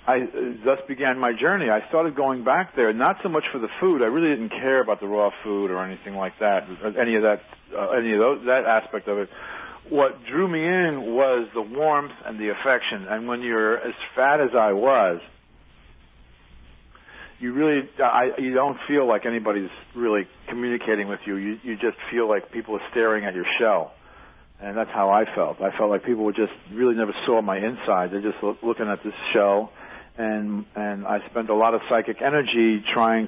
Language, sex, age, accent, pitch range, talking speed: English, male, 50-69, American, 105-130 Hz, 200 wpm